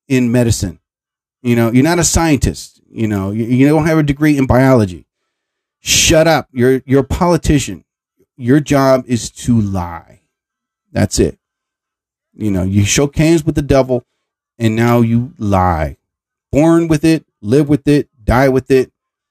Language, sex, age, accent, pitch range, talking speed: English, male, 40-59, American, 120-165 Hz, 160 wpm